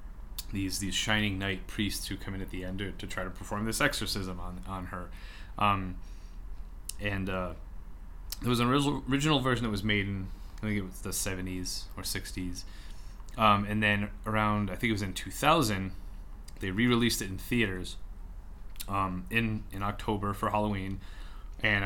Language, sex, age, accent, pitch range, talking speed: English, male, 30-49, American, 95-105 Hz, 175 wpm